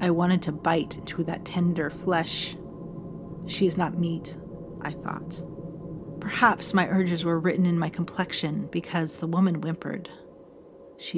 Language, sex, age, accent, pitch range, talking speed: English, female, 40-59, American, 165-195 Hz, 145 wpm